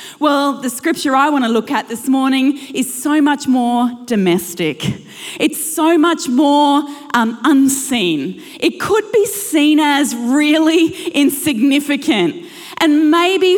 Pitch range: 255-330 Hz